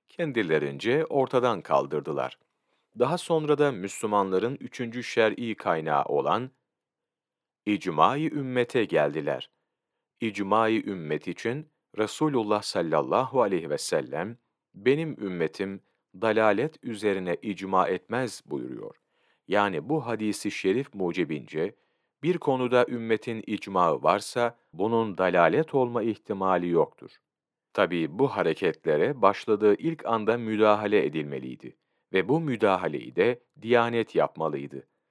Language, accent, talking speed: Turkish, native, 100 wpm